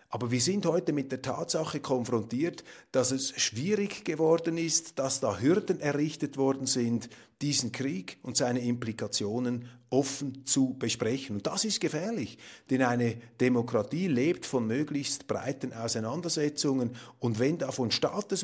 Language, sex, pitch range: German, male, 120-160 Hz